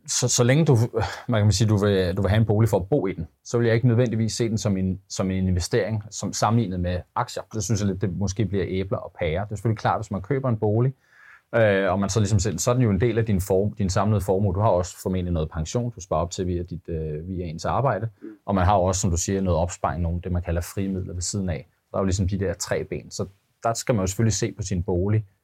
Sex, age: male, 30-49